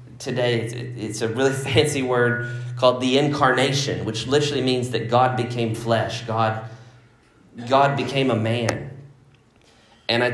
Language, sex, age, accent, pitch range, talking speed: English, male, 30-49, American, 115-130 Hz, 135 wpm